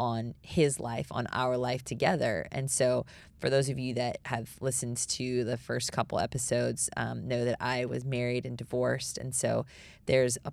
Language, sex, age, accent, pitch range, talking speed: English, female, 20-39, American, 115-130 Hz, 190 wpm